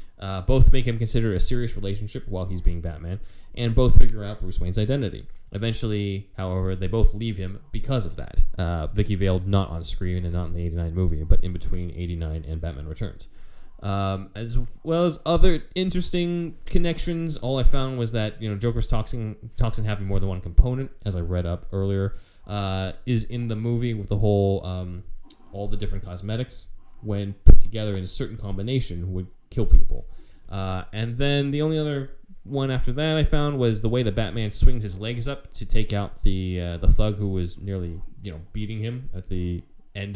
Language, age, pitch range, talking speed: English, 20-39, 90-115 Hz, 205 wpm